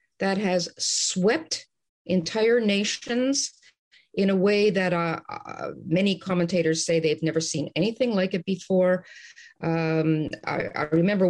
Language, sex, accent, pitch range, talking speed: English, female, American, 165-215 Hz, 135 wpm